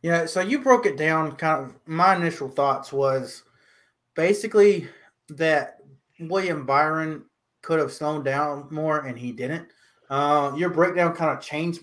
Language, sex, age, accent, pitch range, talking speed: English, male, 30-49, American, 135-175 Hz, 150 wpm